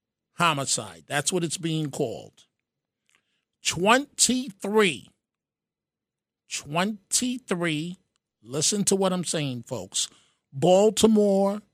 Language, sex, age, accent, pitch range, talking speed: English, male, 50-69, American, 160-215 Hz, 75 wpm